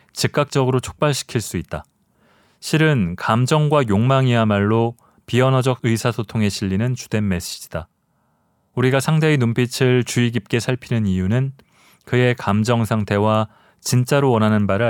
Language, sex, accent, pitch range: Korean, male, native, 105-130 Hz